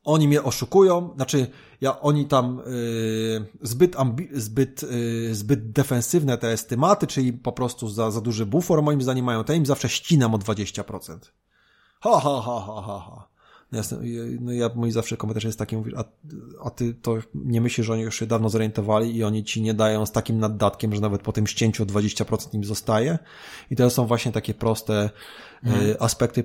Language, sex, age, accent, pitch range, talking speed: Polish, male, 20-39, native, 110-125 Hz, 195 wpm